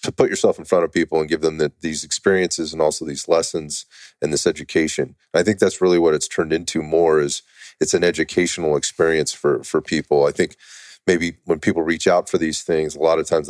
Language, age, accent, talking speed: English, 30-49, American, 230 wpm